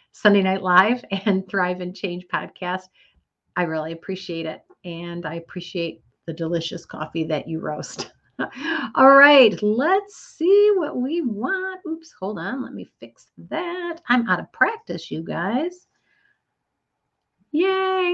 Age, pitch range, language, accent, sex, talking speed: 50-69, 180-250 Hz, English, American, female, 140 wpm